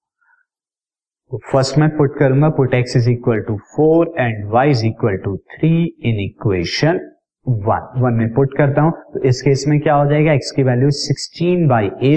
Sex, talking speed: male, 185 wpm